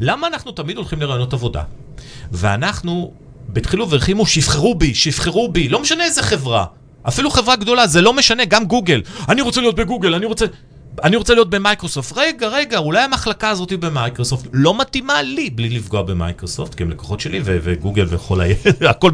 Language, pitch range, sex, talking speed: Hebrew, 120-185 Hz, male, 175 wpm